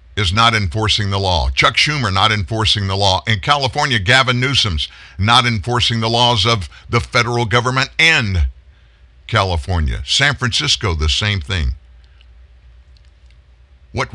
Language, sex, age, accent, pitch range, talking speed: English, male, 50-69, American, 75-110 Hz, 130 wpm